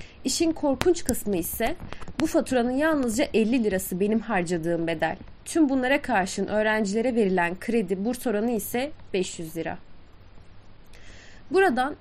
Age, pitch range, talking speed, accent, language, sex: 30-49, 190-265 Hz, 120 wpm, native, Turkish, female